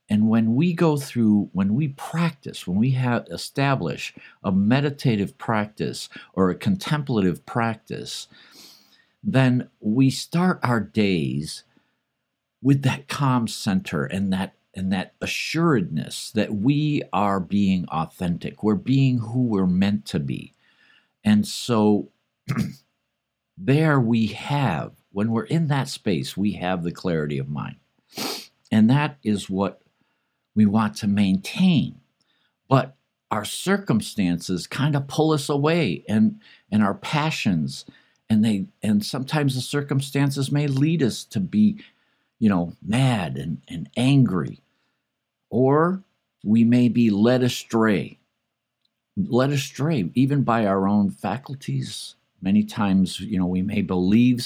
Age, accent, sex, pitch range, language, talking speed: 50-69, American, male, 105-140 Hz, English, 130 wpm